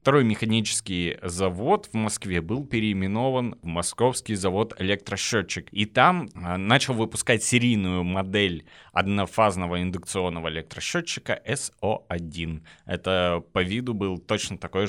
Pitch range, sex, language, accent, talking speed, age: 90-115 Hz, male, Russian, native, 110 wpm, 20-39